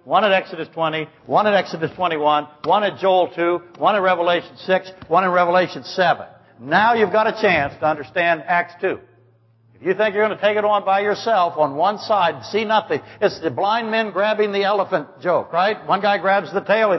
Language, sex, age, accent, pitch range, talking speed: English, male, 60-79, American, 150-215 Hz, 215 wpm